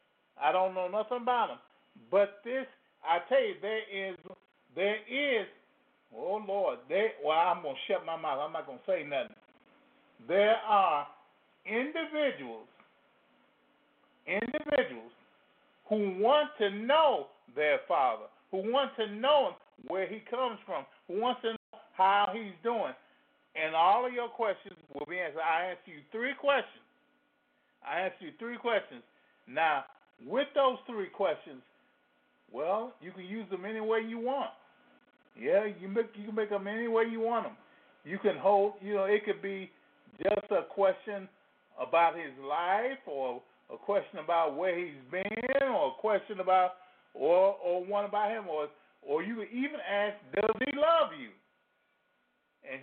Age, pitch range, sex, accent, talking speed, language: 50-69, 190-255 Hz, male, American, 160 wpm, English